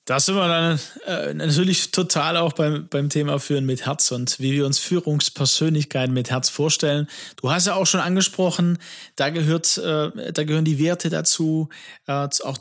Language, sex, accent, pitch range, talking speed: German, male, German, 145-175 Hz, 155 wpm